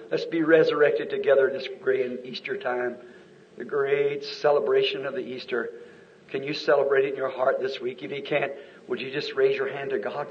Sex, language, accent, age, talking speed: male, English, American, 60-79, 205 wpm